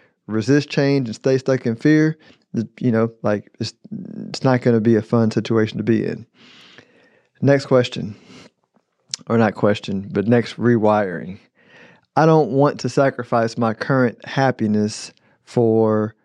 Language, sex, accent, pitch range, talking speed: English, male, American, 115-130 Hz, 145 wpm